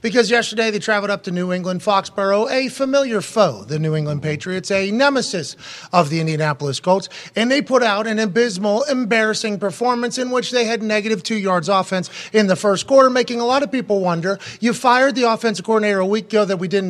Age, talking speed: 30-49, 210 wpm